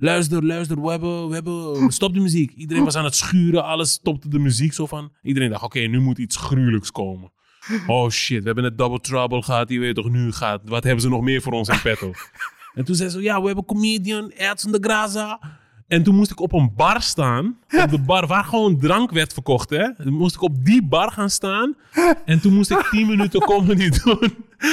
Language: Dutch